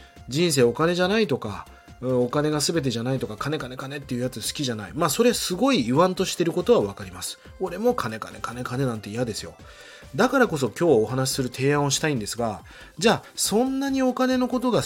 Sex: male